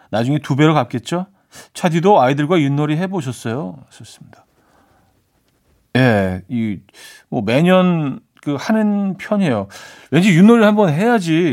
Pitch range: 120-170 Hz